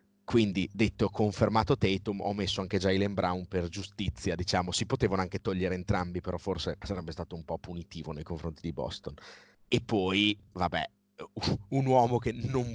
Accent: native